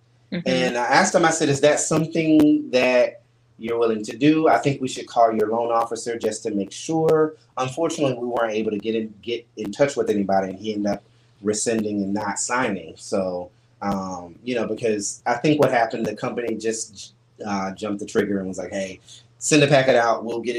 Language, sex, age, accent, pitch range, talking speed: English, male, 30-49, American, 110-140 Hz, 205 wpm